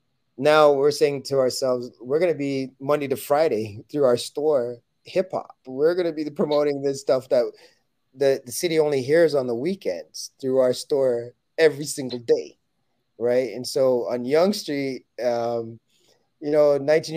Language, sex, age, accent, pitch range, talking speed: English, male, 30-49, American, 120-160 Hz, 170 wpm